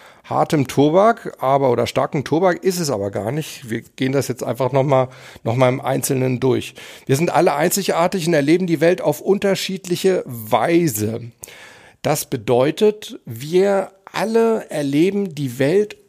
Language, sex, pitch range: German, male, 130-180 Hz